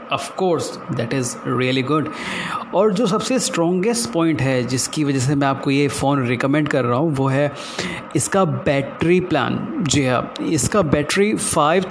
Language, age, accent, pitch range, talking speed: Hindi, 30-49, native, 135-155 Hz, 160 wpm